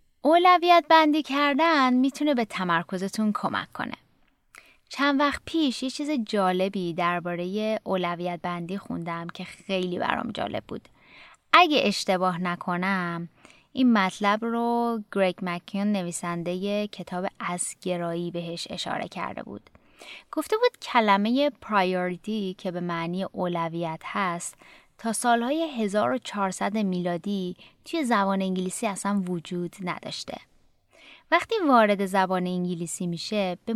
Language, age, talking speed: Persian, 20-39, 115 wpm